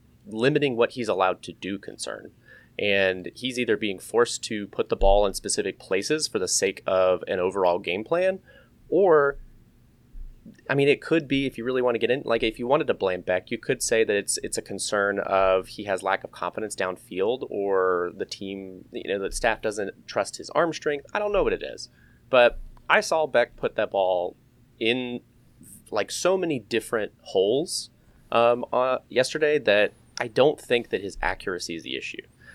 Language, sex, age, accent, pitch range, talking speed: English, male, 30-49, American, 95-130 Hz, 195 wpm